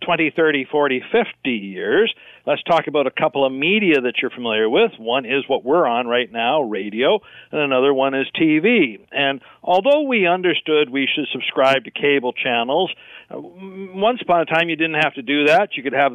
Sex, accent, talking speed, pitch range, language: male, American, 195 wpm, 135-205 Hz, English